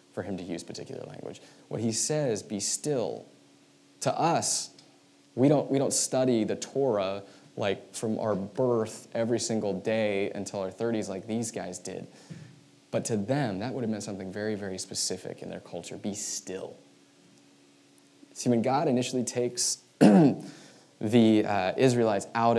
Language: English